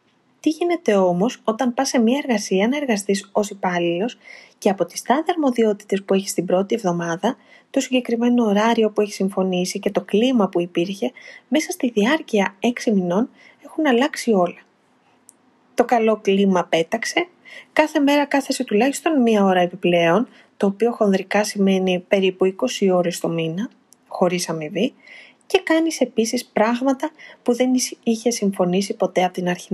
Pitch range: 190-255 Hz